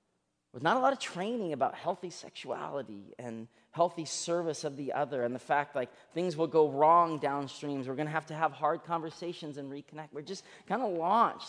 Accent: American